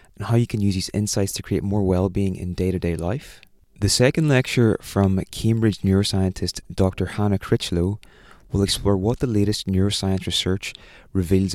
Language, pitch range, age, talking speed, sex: English, 90-105 Hz, 20-39, 160 wpm, male